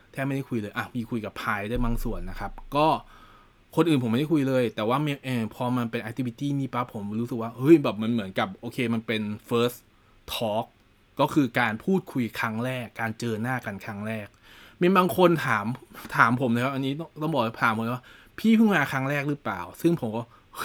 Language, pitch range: Thai, 110-135 Hz